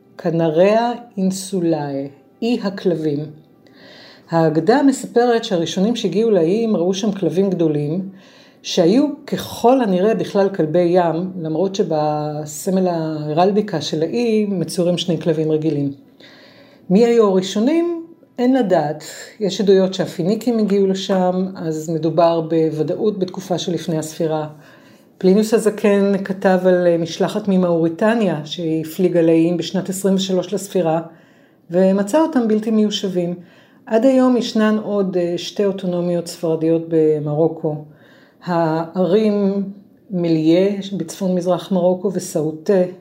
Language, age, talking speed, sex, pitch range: Hebrew, 50-69, 105 wpm, female, 165-210 Hz